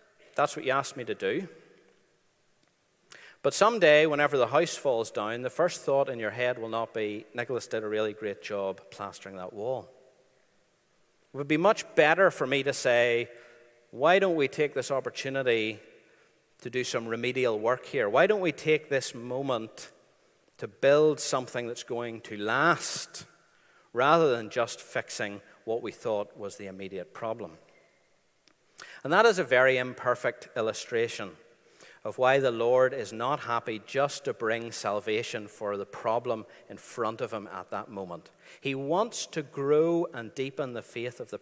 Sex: male